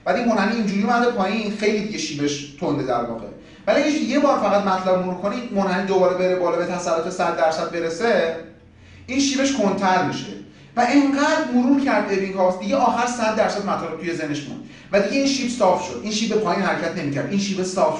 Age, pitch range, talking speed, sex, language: 30-49, 185-250 Hz, 210 wpm, male, Persian